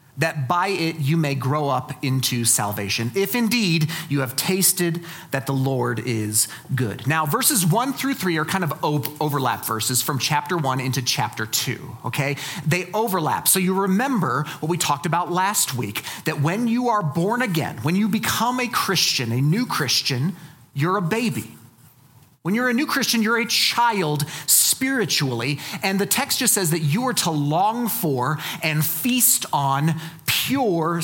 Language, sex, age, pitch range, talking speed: English, male, 40-59, 135-195 Hz, 170 wpm